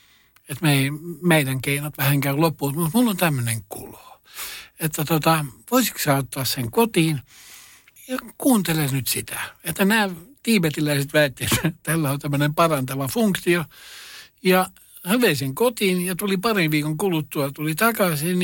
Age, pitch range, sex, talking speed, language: 60-79, 140-180 Hz, male, 145 wpm, Finnish